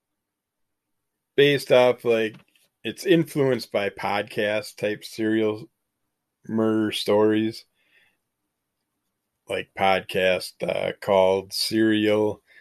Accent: American